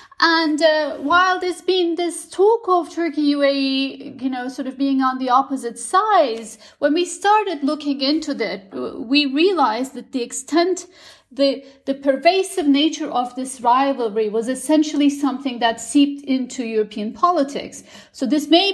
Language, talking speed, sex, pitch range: English, 155 wpm, female, 255-320 Hz